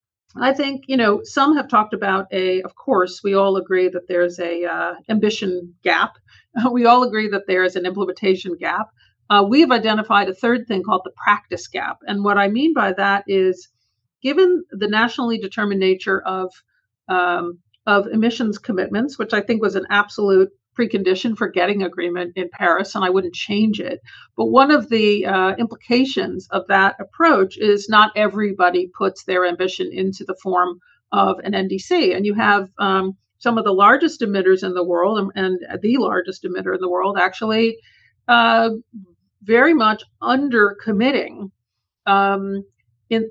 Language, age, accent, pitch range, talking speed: English, 50-69, American, 185-225 Hz, 170 wpm